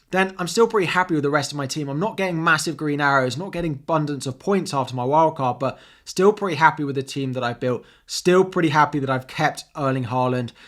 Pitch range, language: 125-150 Hz, English